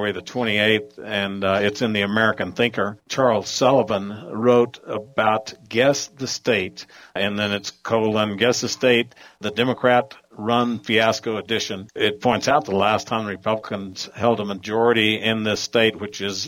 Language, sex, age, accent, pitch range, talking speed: English, male, 60-79, American, 100-115 Hz, 155 wpm